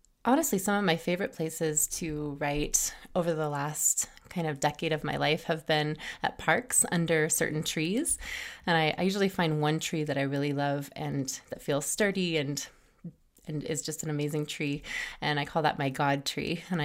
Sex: female